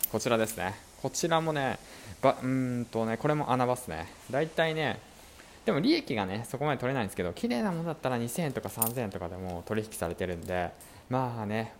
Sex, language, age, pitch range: male, Japanese, 20-39, 95-150 Hz